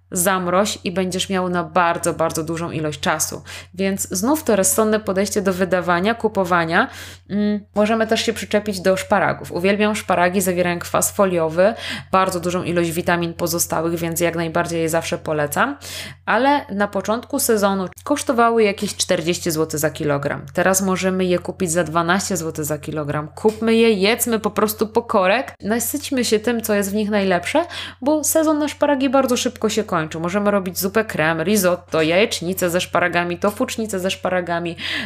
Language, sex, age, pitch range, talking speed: Polish, female, 20-39, 175-220 Hz, 160 wpm